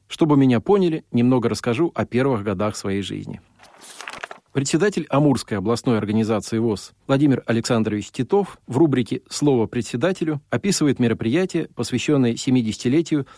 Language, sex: Russian, male